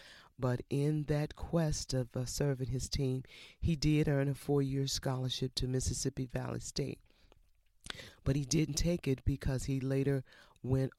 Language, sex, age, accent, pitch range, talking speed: English, female, 40-59, American, 125-140 Hz, 155 wpm